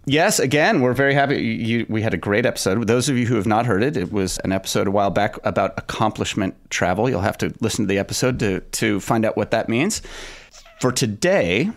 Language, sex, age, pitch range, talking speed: English, male, 30-49, 100-125 Hz, 230 wpm